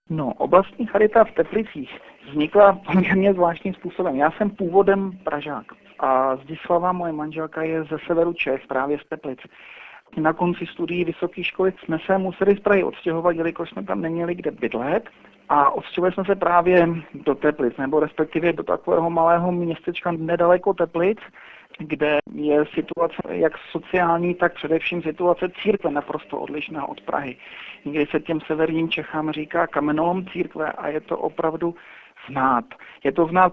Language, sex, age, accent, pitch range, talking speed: Czech, male, 50-69, native, 155-175 Hz, 150 wpm